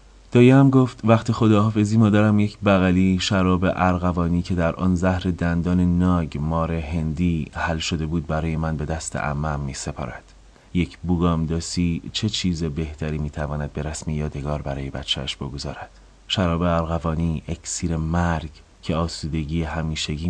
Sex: male